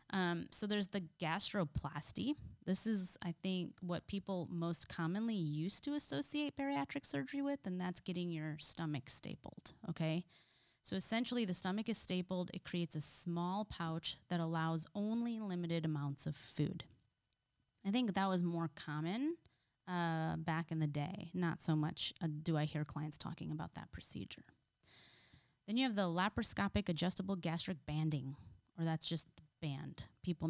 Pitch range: 150-185 Hz